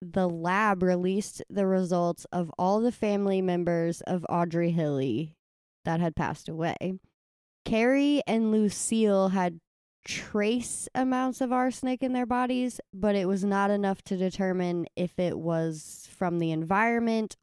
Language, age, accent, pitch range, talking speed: English, 20-39, American, 170-200 Hz, 140 wpm